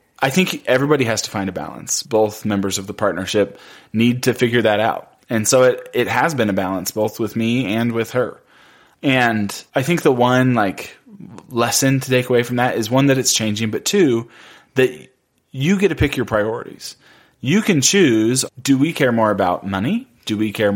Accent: American